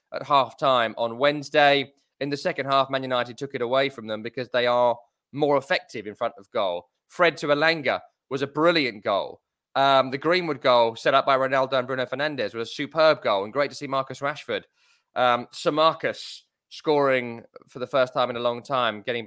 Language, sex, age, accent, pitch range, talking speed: English, male, 20-39, British, 125-160 Hz, 205 wpm